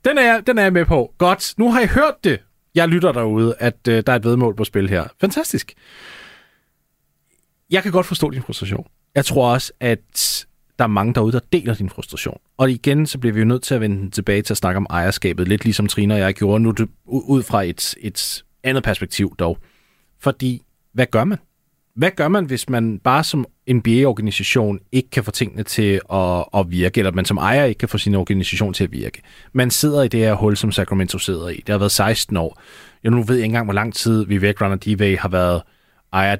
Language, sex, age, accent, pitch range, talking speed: Danish, male, 30-49, native, 100-135 Hz, 225 wpm